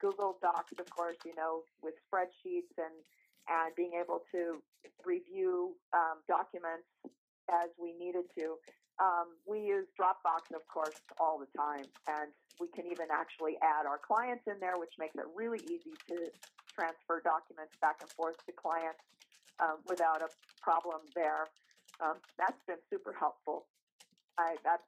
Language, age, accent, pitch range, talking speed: English, 40-59, American, 160-185 Hz, 155 wpm